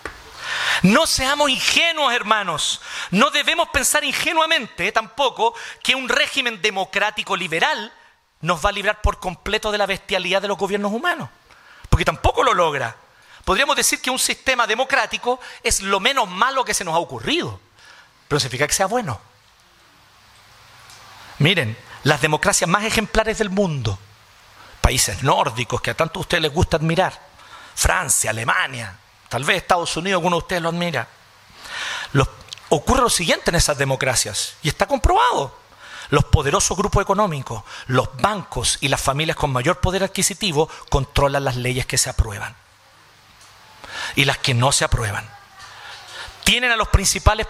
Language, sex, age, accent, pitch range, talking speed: Spanish, male, 40-59, Mexican, 150-240 Hz, 150 wpm